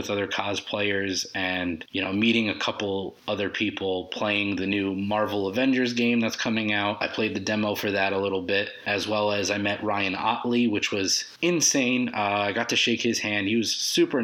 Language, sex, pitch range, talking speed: English, male, 100-115 Hz, 205 wpm